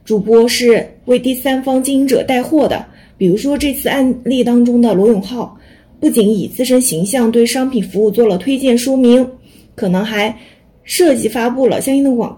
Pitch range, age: 220-265 Hz, 20-39